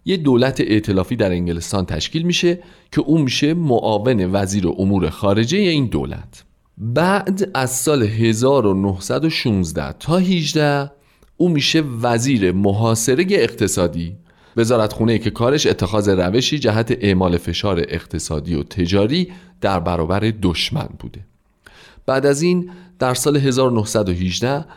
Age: 40-59